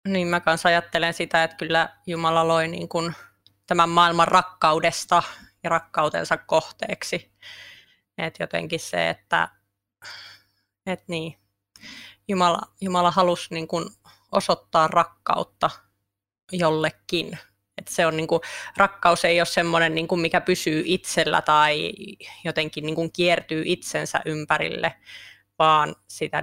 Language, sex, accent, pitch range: Finnish, female, native, 155-175 Hz